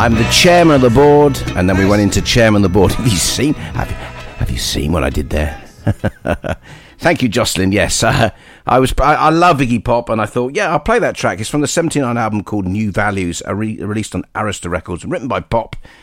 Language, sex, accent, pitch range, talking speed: English, male, British, 85-115 Hz, 240 wpm